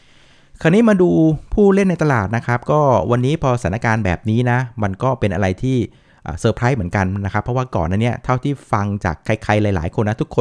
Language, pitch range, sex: Thai, 100-130 Hz, male